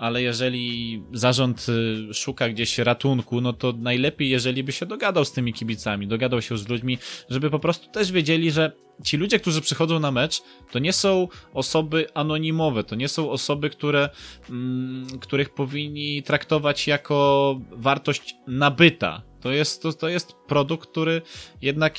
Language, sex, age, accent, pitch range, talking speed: Polish, male, 20-39, native, 120-155 Hz, 155 wpm